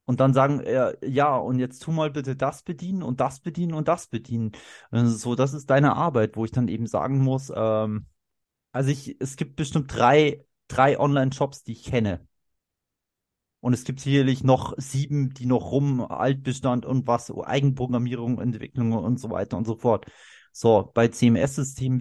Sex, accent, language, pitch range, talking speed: male, German, German, 115-140 Hz, 175 wpm